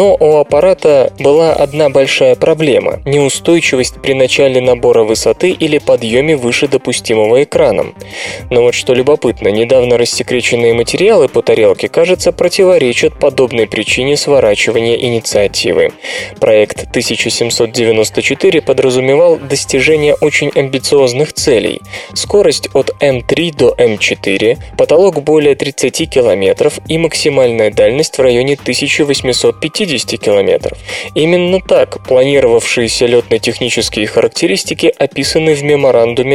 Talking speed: 105 wpm